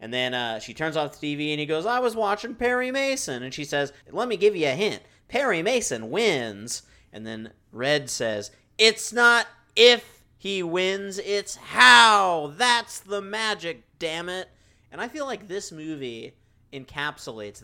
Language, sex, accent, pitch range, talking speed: English, male, American, 115-175 Hz, 175 wpm